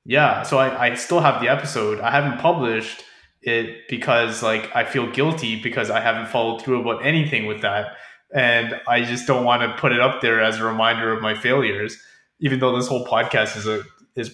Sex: male